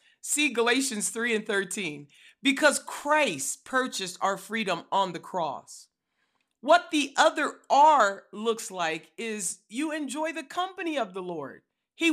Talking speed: 140 wpm